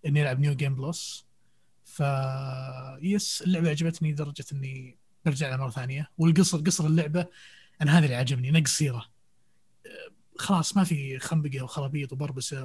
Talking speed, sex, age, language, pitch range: 140 wpm, male, 20-39, Arabic, 130-160 Hz